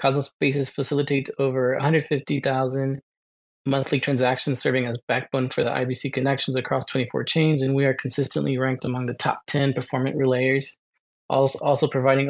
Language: English